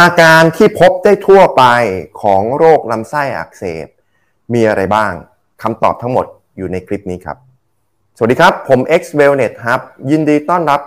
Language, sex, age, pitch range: Thai, male, 20-39, 95-135 Hz